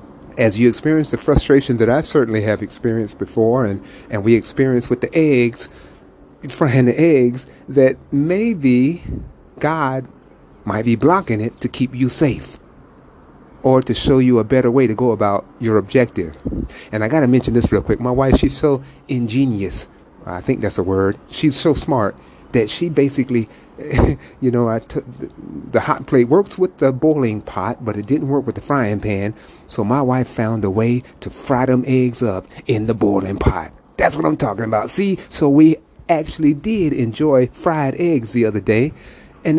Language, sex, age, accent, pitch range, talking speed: English, male, 40-59, American, 110-140 Hz, 180 wpm